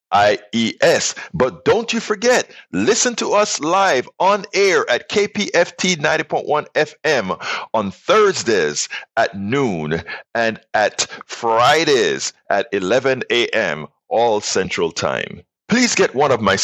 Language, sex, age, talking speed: English, male, 50-69, 125 wpm